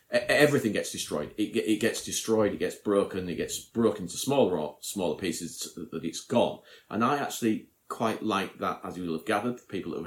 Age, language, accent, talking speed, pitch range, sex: 40-59, English, British, 230 wpm, 85-120 Hz, male